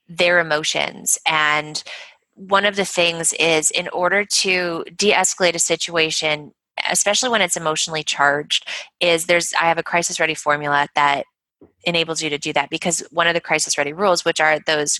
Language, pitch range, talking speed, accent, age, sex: English, 150-180 Hz, 165 wpm, American, 20-39, female